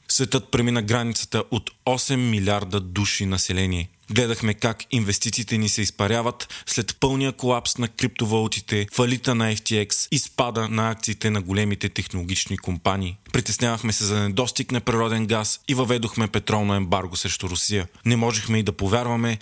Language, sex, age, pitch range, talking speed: Bulgarian, male, 20-39, 100-120 Hz, 150 wpm